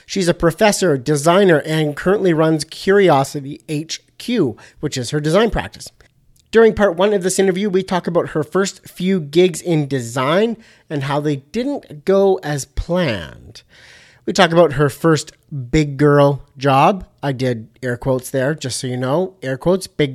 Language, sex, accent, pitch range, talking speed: English, male, American, 140-185 Hz, 165 wpm